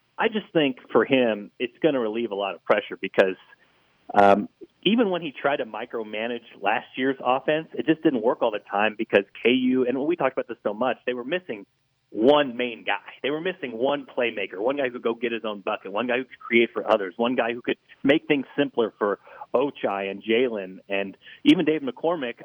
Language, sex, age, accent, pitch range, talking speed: English, male, 30-49, American, 105-145 Hz, 225 wpm